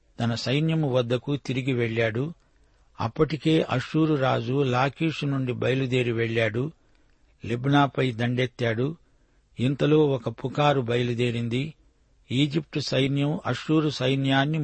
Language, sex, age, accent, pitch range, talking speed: Telugu, male, 60-79, native, 120-145 Hz, 90 wpm